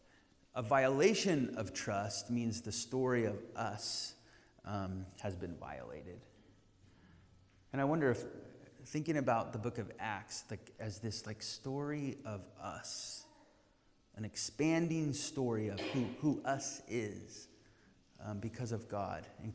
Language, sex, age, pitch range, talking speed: English, male, 30-49, 105-135 Hz, 130 wpm